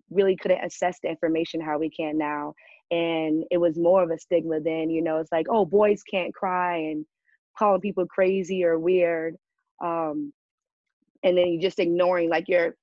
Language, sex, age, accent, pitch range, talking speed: English, female, 20-39, American, 165-190 Hz, 185 wpm